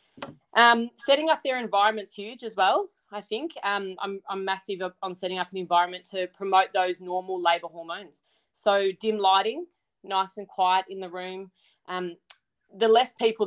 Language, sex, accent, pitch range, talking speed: English, female, Australian, 175-200 Hz, 170 wpm